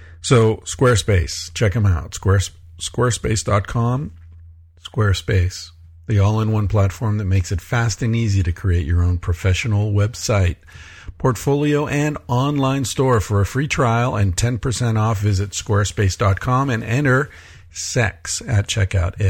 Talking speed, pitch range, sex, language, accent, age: 125 wpm, 90-110 Hz, male, English, American, 50-69